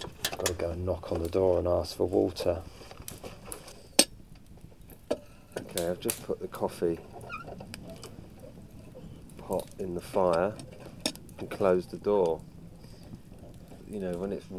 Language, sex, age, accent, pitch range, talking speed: English, male, 30-49, British, 85-105 Hz, 130 wpm